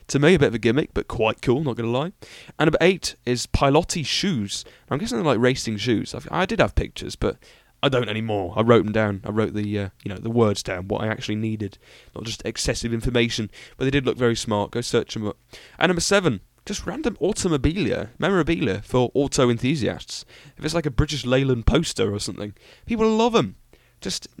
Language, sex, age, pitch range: English, male, 20-39, 110-155 Hz